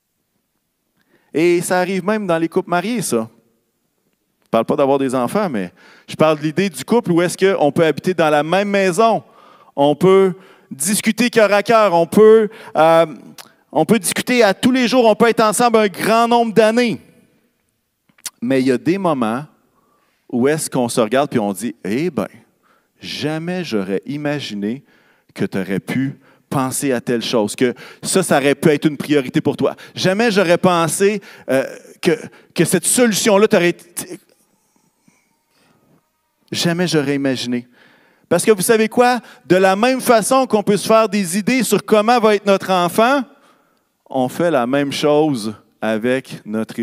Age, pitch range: 40-59, 140-215 Hz